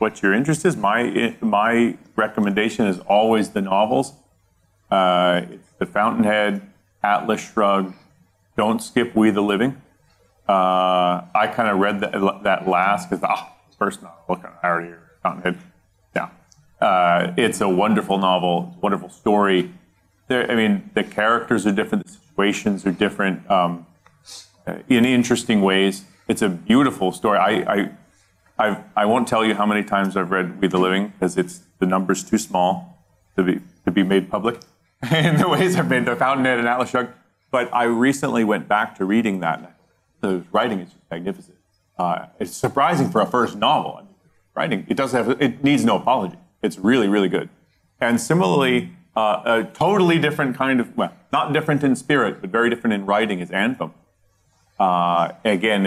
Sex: male